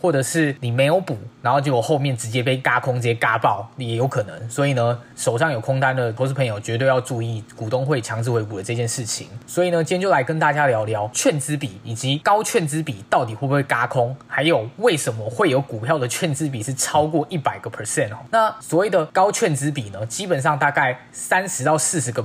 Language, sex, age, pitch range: Chinese, male, 20-39, 120-160 Hz